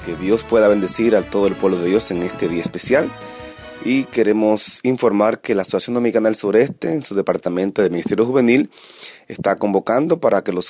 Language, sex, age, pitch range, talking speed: English, male, 30-49, 95-115 Hz, 190 wpm